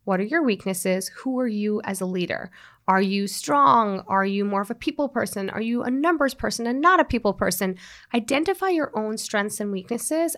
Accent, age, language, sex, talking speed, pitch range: American, 30-49, English, female, 210 wpm, 190-245 Hz